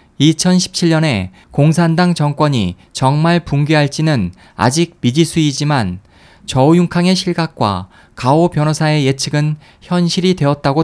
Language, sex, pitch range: Korean, male, 125-170 Hz